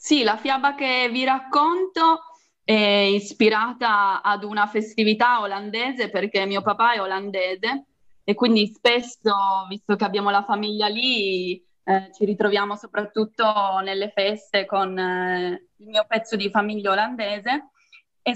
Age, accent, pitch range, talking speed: 20-39, native, 200-255 Hz, 135 wpm